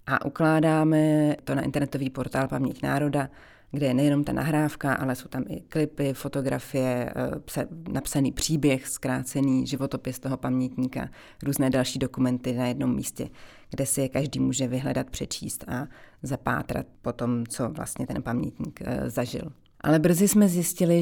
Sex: female